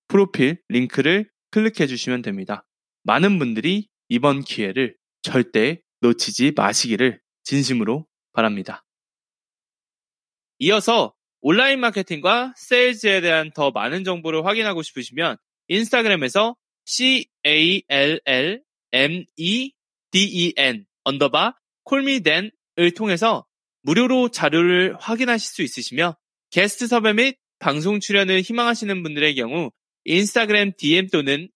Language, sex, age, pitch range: Korean, male, 20-39, 145-225 Hz